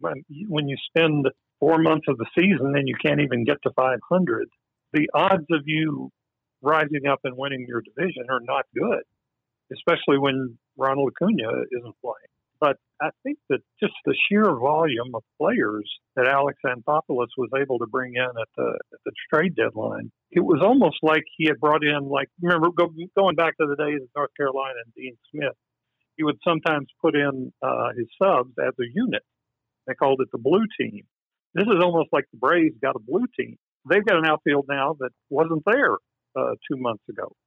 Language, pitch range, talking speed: English, 130-165 Hz, 185 wpm